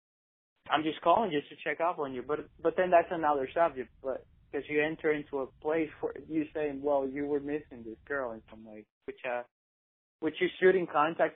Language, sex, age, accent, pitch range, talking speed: English, male, 30-49, American, 115-150 Hz, 210 wpm